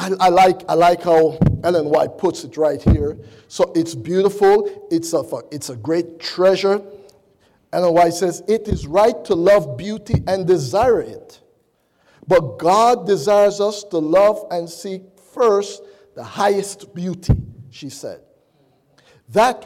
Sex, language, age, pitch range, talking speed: male, English, 50-69, 165-210 Hz, 145 wpm